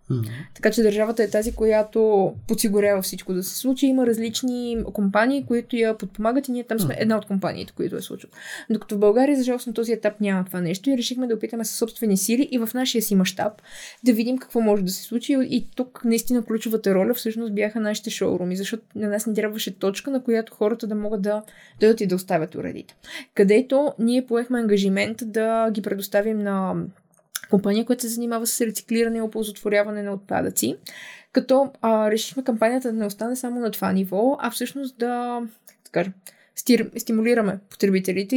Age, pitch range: 20-39, 205-240 Hz